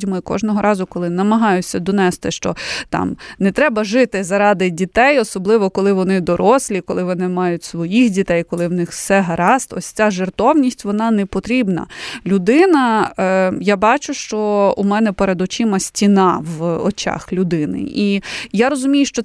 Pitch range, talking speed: 185-230 Hz, 155 wpm